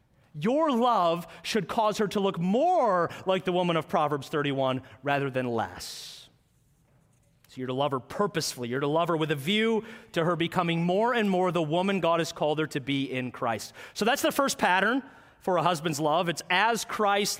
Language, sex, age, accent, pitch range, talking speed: English, male, 30-49, American, 145-235 Hz, 200 wpm